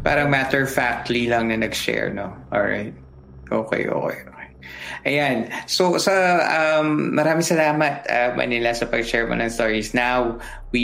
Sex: male